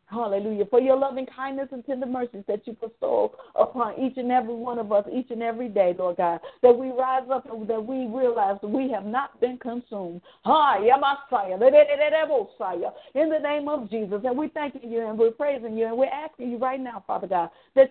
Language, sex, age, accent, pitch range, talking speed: English, female, 50-69, American, 220-270 Hz, 200 wpm